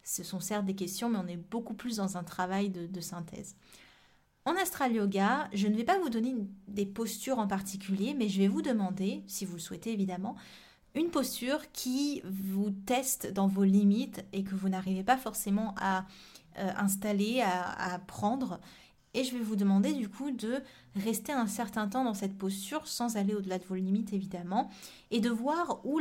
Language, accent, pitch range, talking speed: French, French, 195-250 Hz, 195 wpm